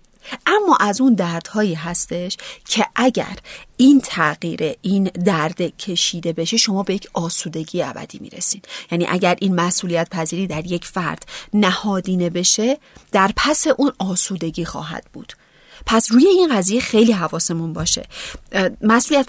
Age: 40-59